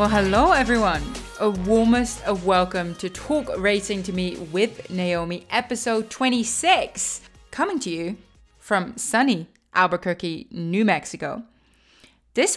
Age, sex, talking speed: 20-39, female, 120 wpm